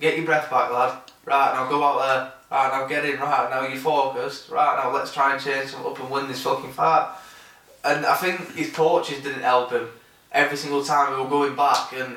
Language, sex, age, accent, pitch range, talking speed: English, male, 10-29, British, 130-150 Hz, 230 wpm